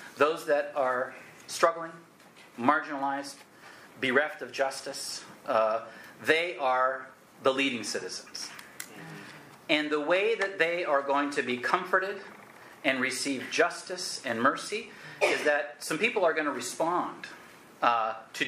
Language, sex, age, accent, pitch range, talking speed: English, male, 40-59, American, 135-190 Hz, 125 wpm